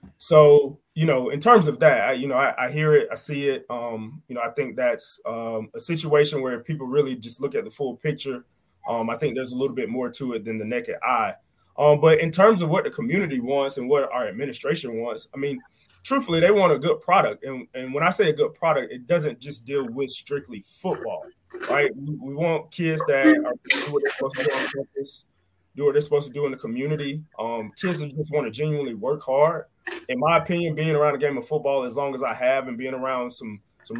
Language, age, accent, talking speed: English, 20-39, American, 245 wpm